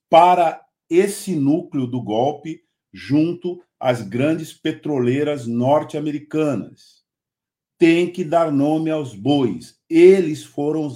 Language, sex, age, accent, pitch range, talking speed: Portuguese, male, 50-69, Brazilian, 135-180 Hz, 105 wpm